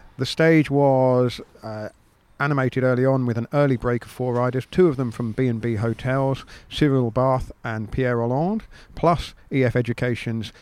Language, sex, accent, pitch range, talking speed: English, male, British, 125-145 Hz, 160 wpm